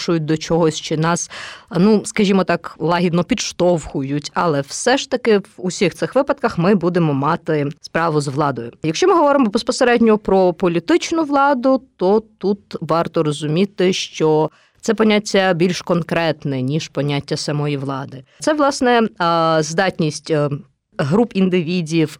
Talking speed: 130 wpm